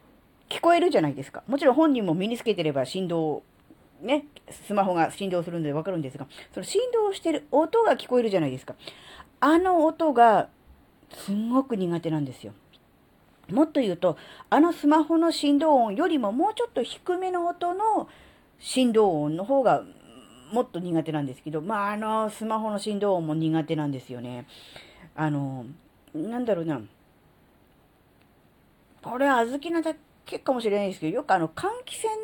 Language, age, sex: Japanese, 40-59, female